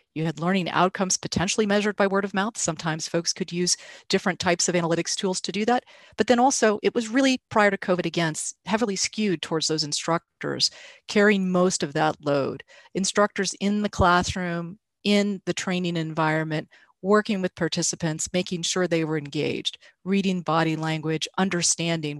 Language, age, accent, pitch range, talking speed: English, 40-59, American, 160-195 Hz, 170 wpm